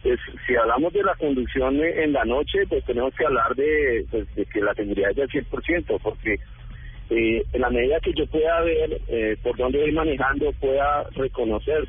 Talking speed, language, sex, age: 180 wpm, Spanish, male, 40-59